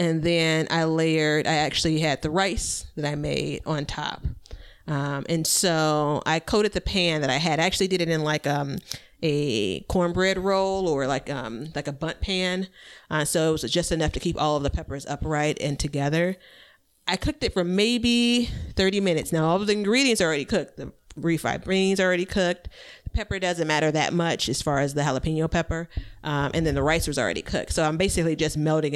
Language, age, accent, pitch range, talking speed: English, 30-49, American, 150-175 Hz, 210 wpm